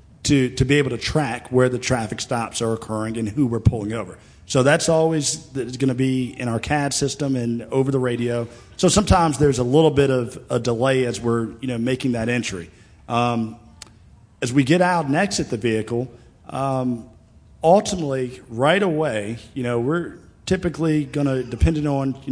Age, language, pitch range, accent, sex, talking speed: 40-59, English, 115-140 Hz, American, male, 190 wpm